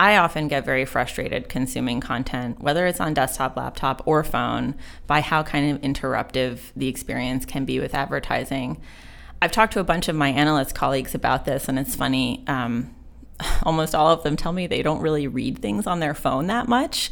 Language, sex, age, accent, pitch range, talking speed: English, female, 30-49, American, 135-160 Hz, 195 wpm